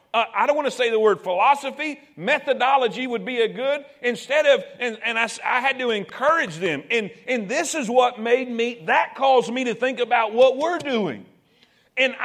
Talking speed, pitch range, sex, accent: 195 wpm, 240-295 Hz, male, American